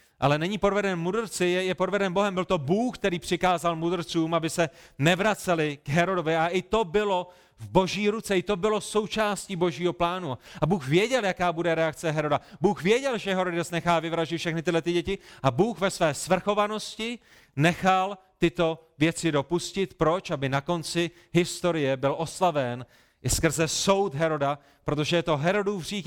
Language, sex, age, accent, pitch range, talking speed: Czech, male, 30-49, native, 155-185 Hz, 170 wpm